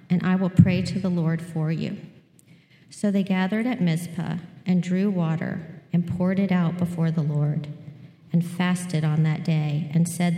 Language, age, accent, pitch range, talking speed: English, 50-69, American, 160-180 Hz, 180 wpm